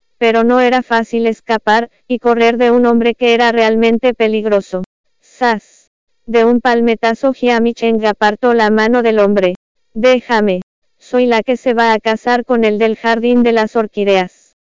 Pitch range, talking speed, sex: 220-245 Hz, 160 wpm, female